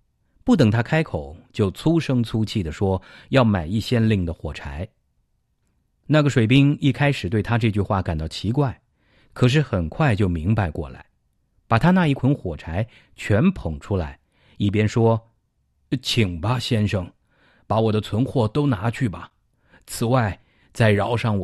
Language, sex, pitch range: English, male, 100-135 Hz